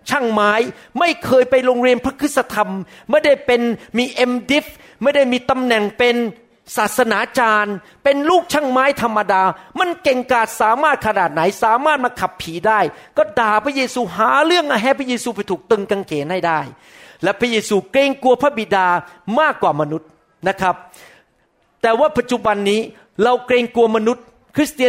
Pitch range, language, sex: 200-255 Hz, Thai, male